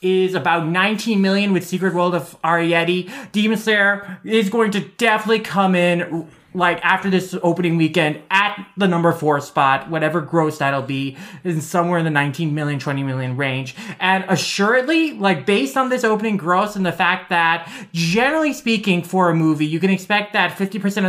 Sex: male